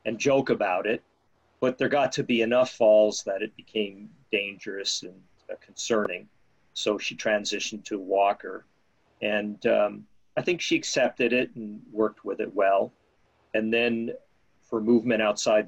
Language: English